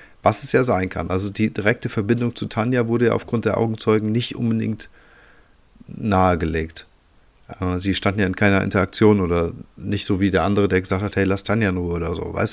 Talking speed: 195 wpm